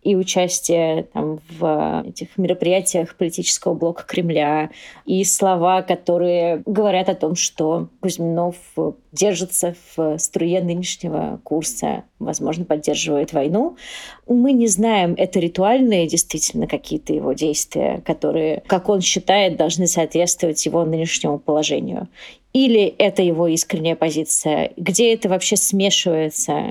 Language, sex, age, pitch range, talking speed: Russian, female, 30-49, 165-190 Hz, 115 wpm